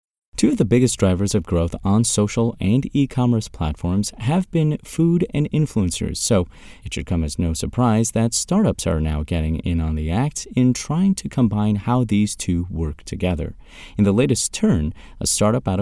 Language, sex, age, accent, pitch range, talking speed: English, male, 30-49, American, 85-120 Hz, 185 wpm